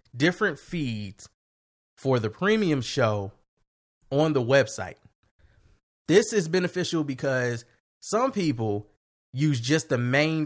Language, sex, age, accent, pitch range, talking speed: English, male, 20-39, American, 115-155 Hz, 110 wpm